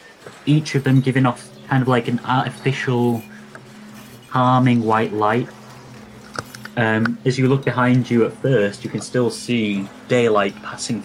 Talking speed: 145 wpm